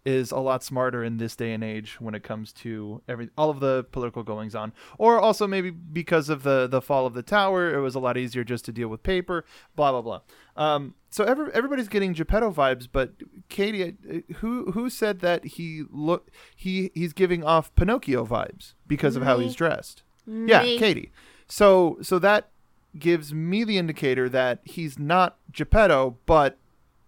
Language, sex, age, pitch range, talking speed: English, male, 30-49, 130-175 Hz, 185 wpm